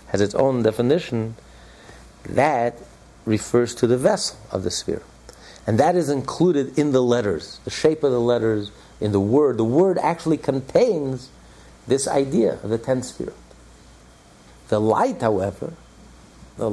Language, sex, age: English, male, 50-69